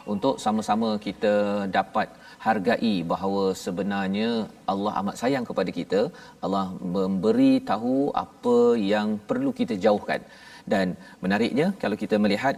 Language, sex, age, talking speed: Malayalam, male, 40-59, 120 wpm